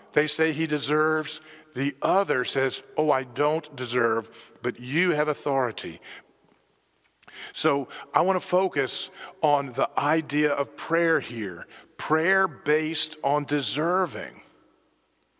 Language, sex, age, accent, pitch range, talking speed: English, male, 50-69, American, 135-165 Hz, 115 wpm